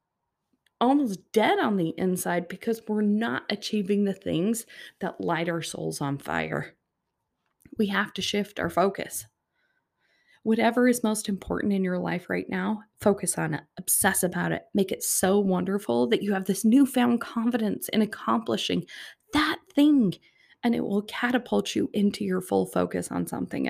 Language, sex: English, female